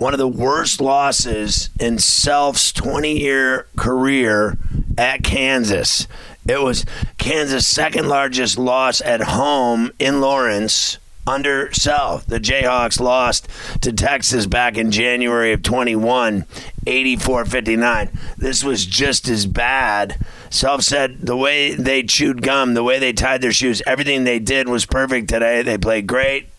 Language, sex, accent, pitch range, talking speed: English, male, American, 115-130 Hz, 140 wpm